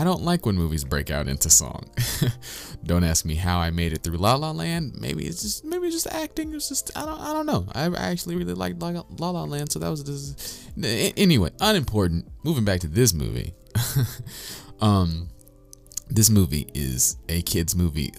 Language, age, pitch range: English, 20-39, 80-110 Hz